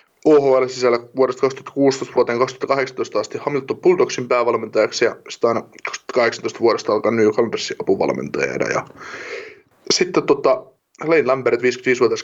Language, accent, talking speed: Finnish, native, 120 wpm